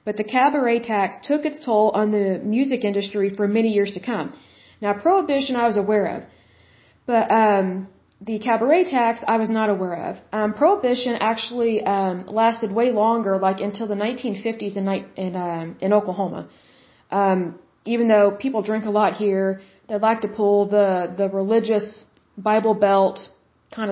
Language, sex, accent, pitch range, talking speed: Bengali, female, American, 195-230 Hz, 165 wpm